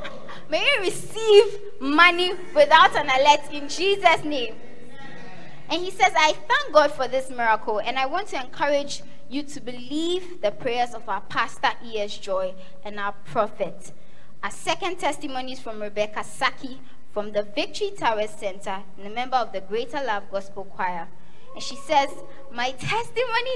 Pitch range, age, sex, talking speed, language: 210-300 Hz, 20-39, female, 160 wpm, English